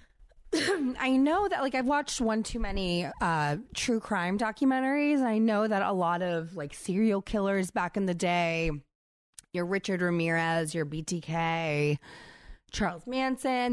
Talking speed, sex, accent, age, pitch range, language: 145 wpm, female, American, 20-39, 165-245 Hz, English